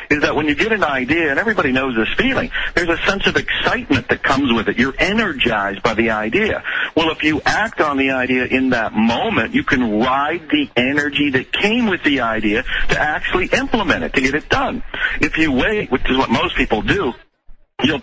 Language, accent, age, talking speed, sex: English, American, 50-69, 215 wpm, male